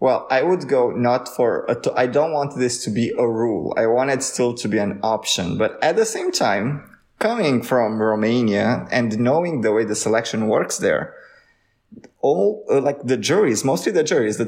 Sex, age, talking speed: male, 20-39, 195 wpm